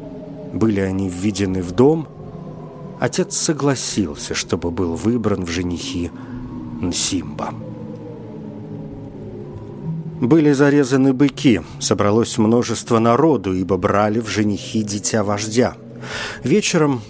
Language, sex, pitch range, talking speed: Russian, male, 110-140 Hz, 90 wpm